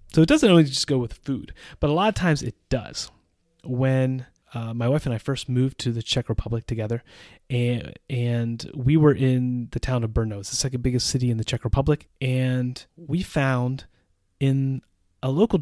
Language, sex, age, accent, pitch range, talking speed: English, male, 30-49, American, 115-140 Hz, 200 wpm